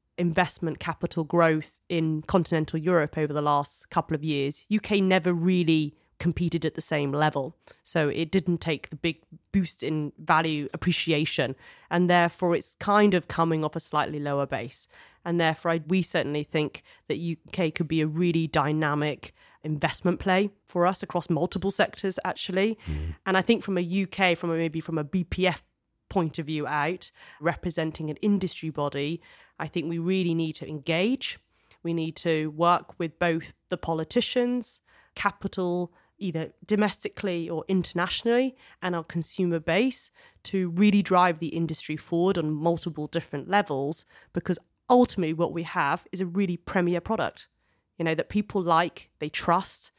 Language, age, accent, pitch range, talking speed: English, 30-49, British, 155-185 Hz, 155 wpm